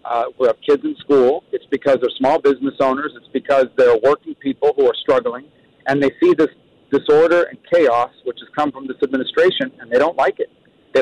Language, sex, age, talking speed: English, male, 50-69, 210 wpm